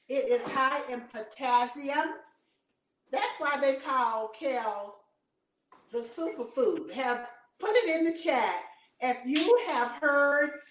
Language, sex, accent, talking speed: English, female, American, 125 wpm